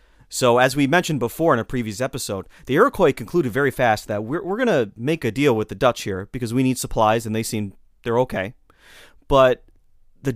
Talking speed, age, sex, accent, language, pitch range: 210 wpm, 30-49, male, American, English, 115-150 Hz